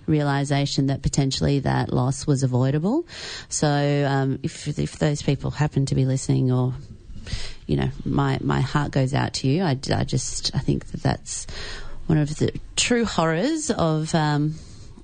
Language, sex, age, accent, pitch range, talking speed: English, female, 30-49, Australian, 135-160 Hz, 165 wpm